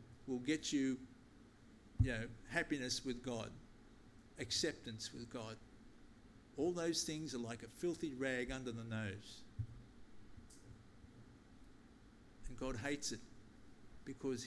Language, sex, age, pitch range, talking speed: English, male, 50-69, 110-145 Hz, 110 wpm